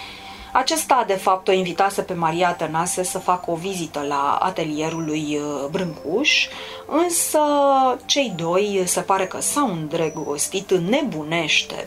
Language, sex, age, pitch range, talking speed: Romanian, female, 30-49, 165-245 Hz, 130 wpm